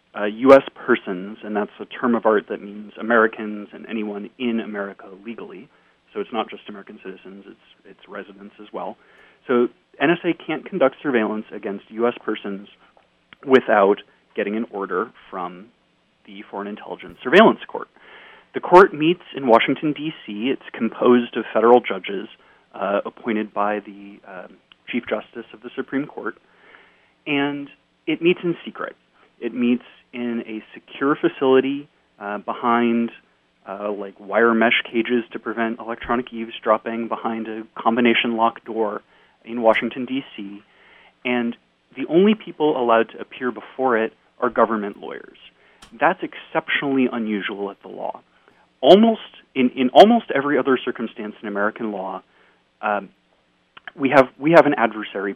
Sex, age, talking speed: male, 30-49, 145 wpm